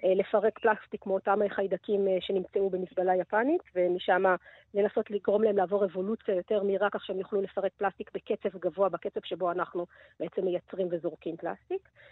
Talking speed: 145 wpm